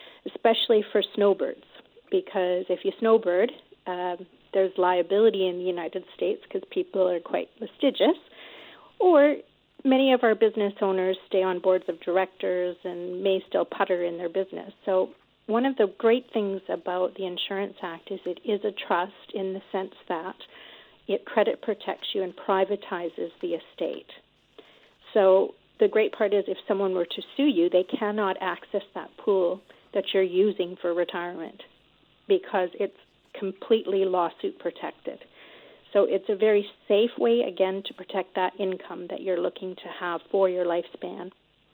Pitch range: 185-225 Hz